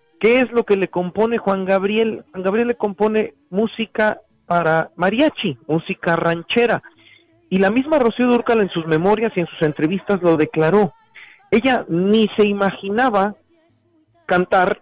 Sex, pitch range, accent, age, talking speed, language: male, 140-200 Hz, Mexican, 40-59, 145 wpm, Spanish